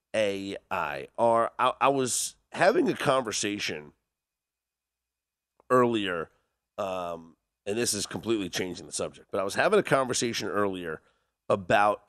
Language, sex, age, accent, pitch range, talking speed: English, male, 30-49, American, 85-115 Hz, 125 wpm